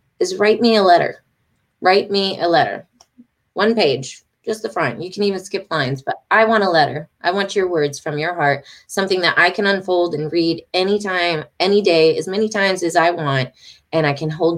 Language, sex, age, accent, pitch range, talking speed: English, female, 20-39, American, 165-220 Hz, 215 wpm